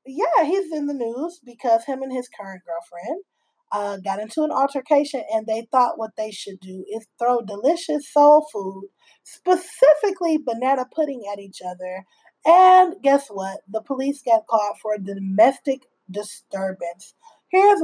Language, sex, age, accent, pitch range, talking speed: English, female, 20-39, American, 210-275 Hz, 155 wpm